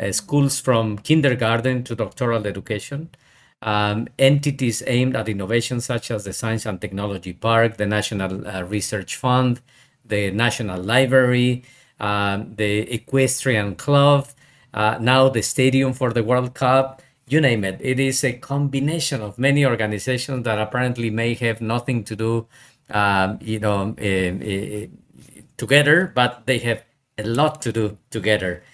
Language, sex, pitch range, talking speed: English, male, 105-130 Hz, 140 wpm